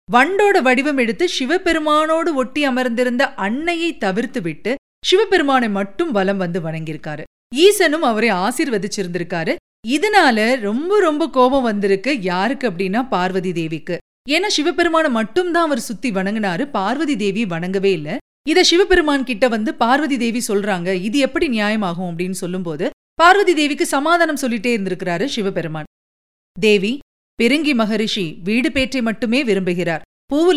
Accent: native